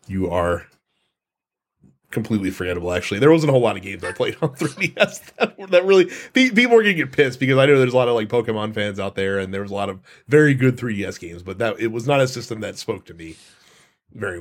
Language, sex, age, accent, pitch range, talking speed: English, male, 30-49, American, 105-135 Hz, 255 wpm